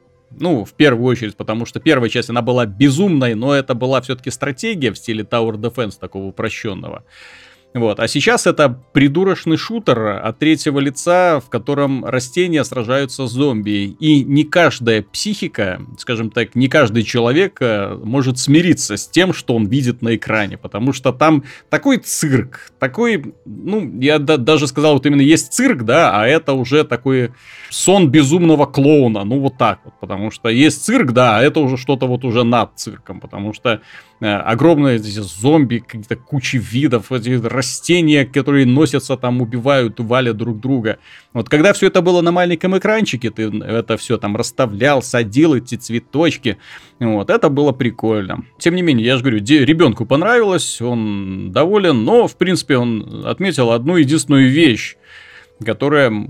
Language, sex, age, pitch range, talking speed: Russian, male, 30-49, 115-150 Hz, 160 wpm